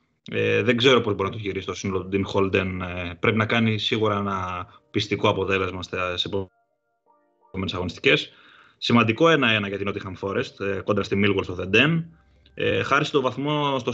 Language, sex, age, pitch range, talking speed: Greek, male, 20-39, 105-135 Hz, 170 wpm